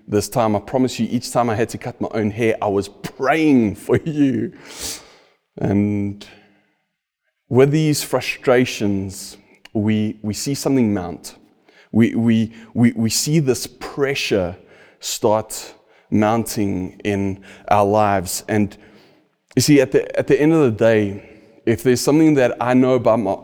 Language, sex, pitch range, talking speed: English, male, 105-135 Hz, 150 wpm